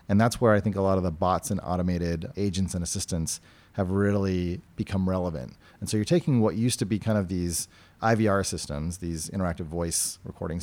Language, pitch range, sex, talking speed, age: English, 85-105 Hz, male, 205 wpm, 30-49